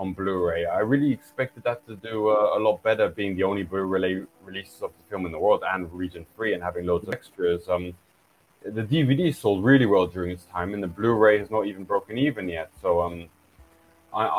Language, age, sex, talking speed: English, 20-39, male, 215 wpm